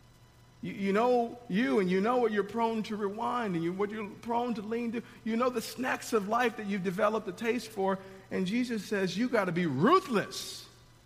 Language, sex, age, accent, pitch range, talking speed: English, male, 50-69, American, 175-235 Hz, 215 wpm